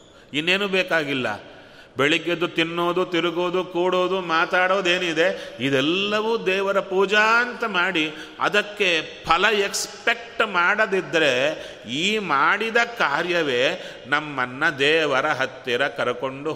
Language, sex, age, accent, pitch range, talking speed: Kannada, male, 30-49, native, 125-185 Hz, 85 wpm